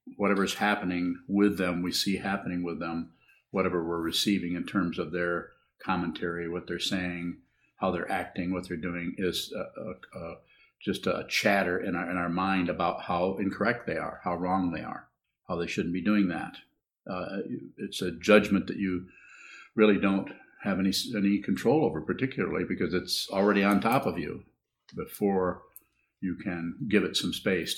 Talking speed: 175 wpm